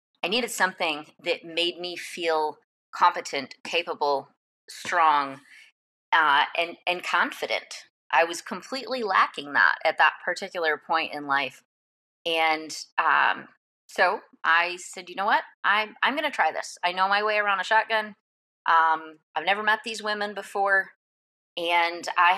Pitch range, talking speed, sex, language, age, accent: 160-195 Hz, 145 wpm, female, English, 30-49, American